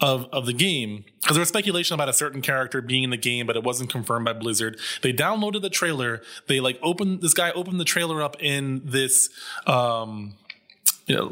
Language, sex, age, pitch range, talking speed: English, male, 20-39, 130-175 Hz, 205 wpm